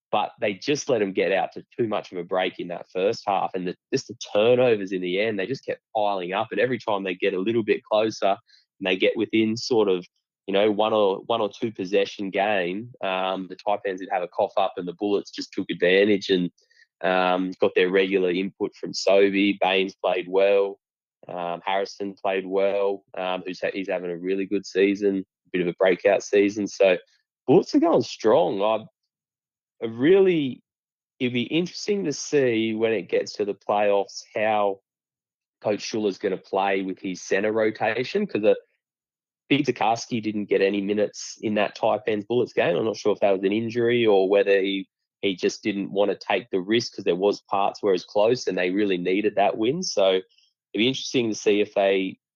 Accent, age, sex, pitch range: Australian, 20-39, male, 95-120 Hz